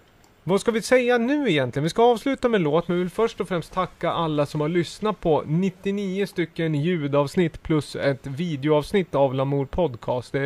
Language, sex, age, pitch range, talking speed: Swedish, male, 30-49, 135-175 Hz, 190 wpm